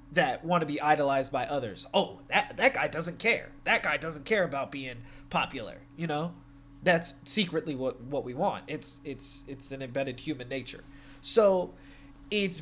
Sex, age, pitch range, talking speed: male, 20-39, 135-165 Hz, 175 wpm